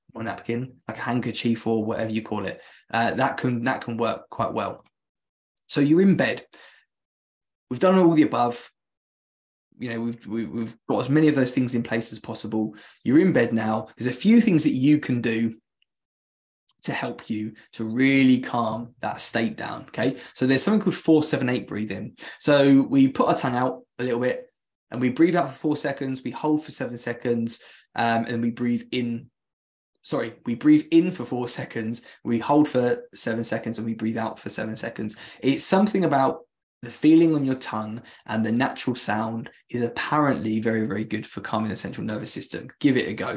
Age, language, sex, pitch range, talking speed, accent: 20-39, English, male, 115-140 Hz, 195 wpm, British